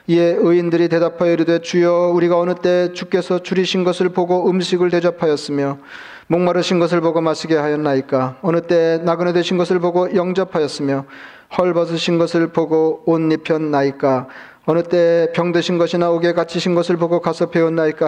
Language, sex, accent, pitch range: Korean, male, native, 160-175 Hz